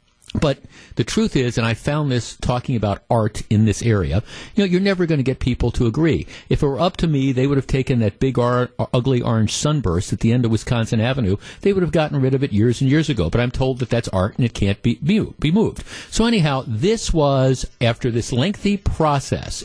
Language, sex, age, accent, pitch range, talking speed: English, male, 50-69, American, 115-150 Hz, 230 wpm